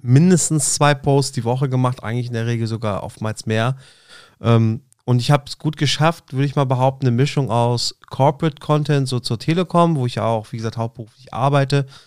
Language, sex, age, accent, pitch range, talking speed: German, male, 30-49, German, 120-145 Hz, 195 wpm